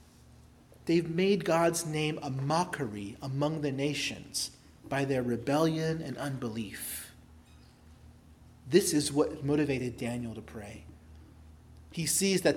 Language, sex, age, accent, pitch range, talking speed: English, male, 30-49, American, 130-185 Hz, 115 wpm